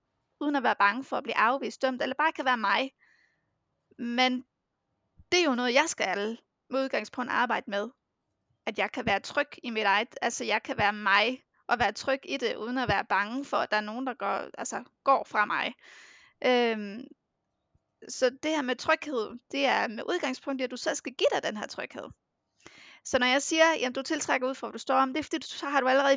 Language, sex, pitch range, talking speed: Danish, female, 235-285 Hz, 220 wpm